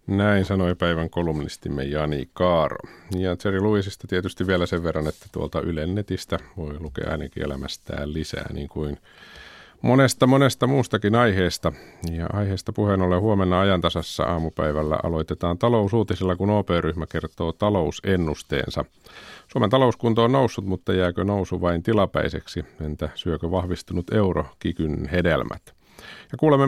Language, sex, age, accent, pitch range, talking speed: Finnish, male, 50-69, native, 80-100 Hz, 125 wpm